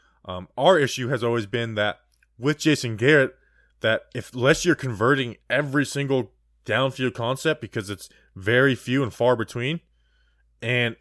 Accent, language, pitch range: American, English, 110-145 Hz